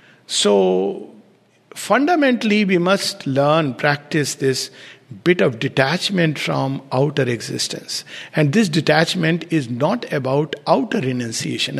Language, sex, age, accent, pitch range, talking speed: English, male, 60-79, Indian, 140-195 Hz, 105 wpm